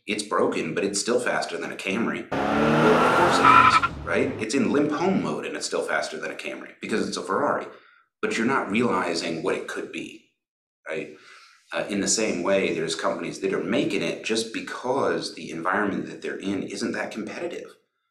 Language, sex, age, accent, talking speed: English, male, 30-49, American, 200 wpm